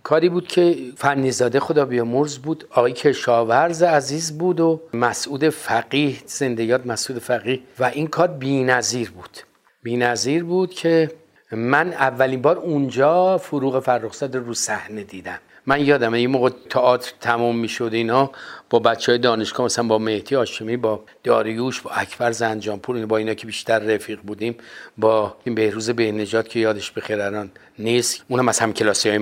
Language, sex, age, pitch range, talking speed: Persian, male, 50-69, 115-165 Hz, 155 wpm